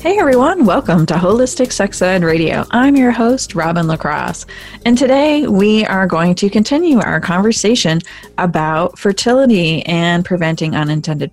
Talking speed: 145 wpm